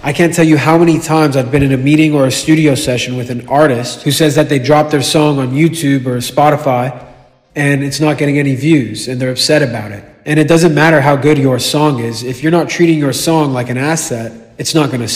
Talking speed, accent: 245 wpm, American